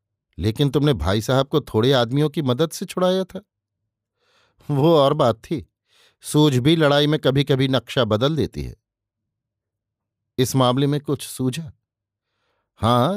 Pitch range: 110-145 Hz